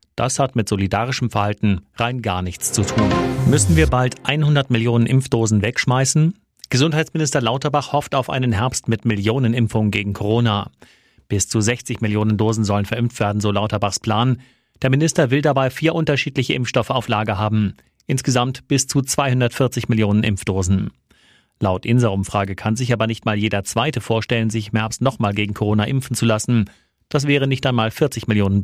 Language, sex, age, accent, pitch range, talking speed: German, male, 30-49, German, 105-130 Hz, 165 wpm